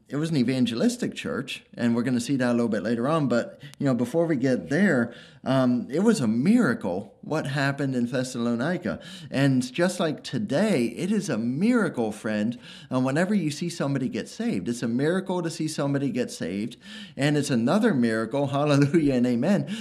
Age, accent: 30-49, American